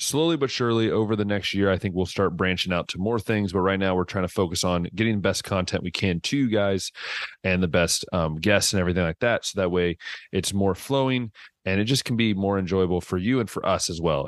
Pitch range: 90-110 Hz